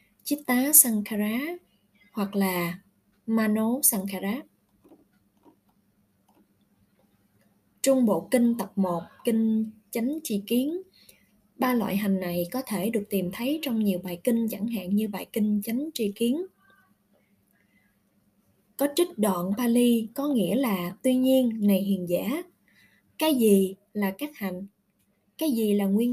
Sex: female